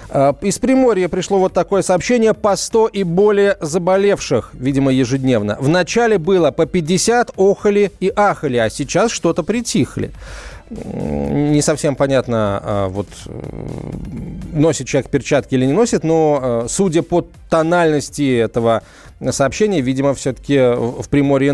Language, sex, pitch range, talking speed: Russian, male, 125-185 Hz, 125 wpm